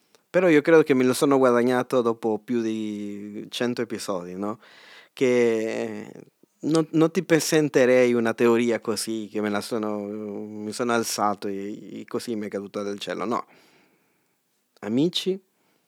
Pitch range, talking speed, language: 105-155 Hz, 145 wpm, Italian